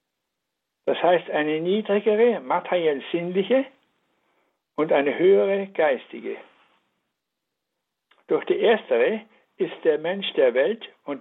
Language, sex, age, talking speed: German, male, 60-79, 100 wpm